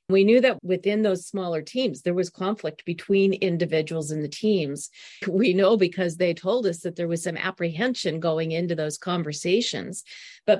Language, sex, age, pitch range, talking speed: English, female, 40-59, 170-200 Hz, 175 wpm